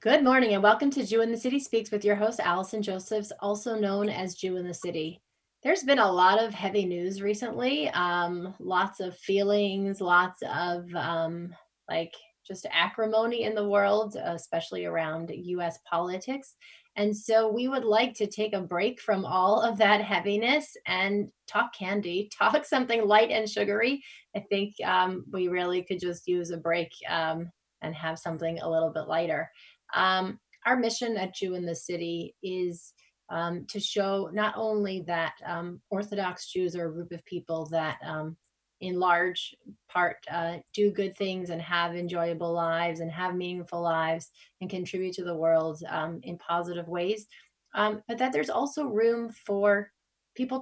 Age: 20-39